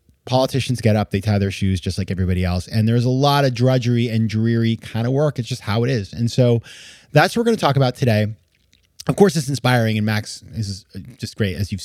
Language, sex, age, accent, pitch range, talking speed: English, male, 30-49, American, 100-130 Hz, 245 wpm